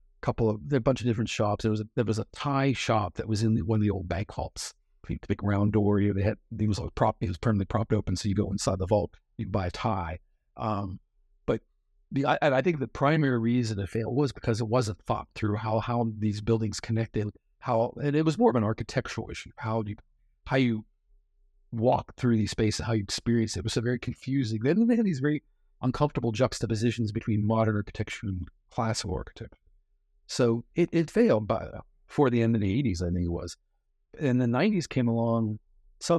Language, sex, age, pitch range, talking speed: English, male, 50-69, 105-130 Hz, 225 wpm